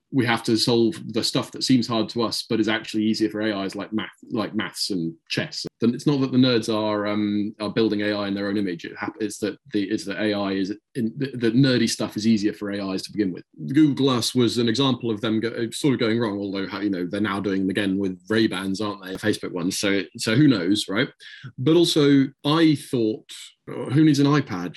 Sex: male